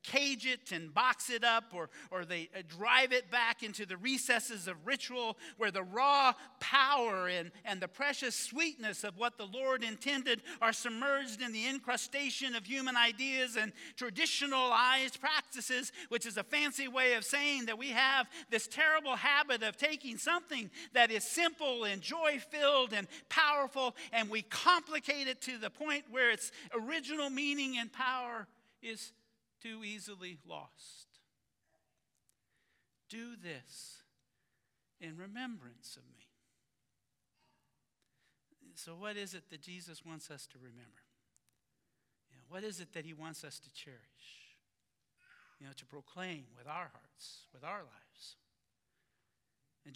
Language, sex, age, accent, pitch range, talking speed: English, male, 50-69, American, 170-265 Hz, 140 wpm